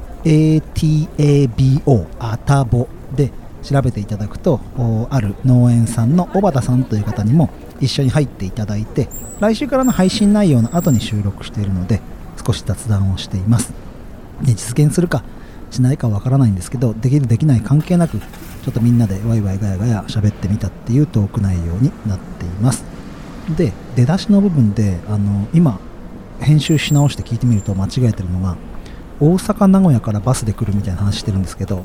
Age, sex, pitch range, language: 40-59, male, 100-140 Hz, Japanese